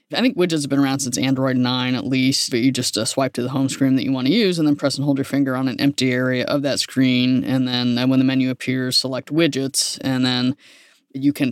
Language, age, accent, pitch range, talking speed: English, 20-39, American, 130-145 Hz, 270 wpm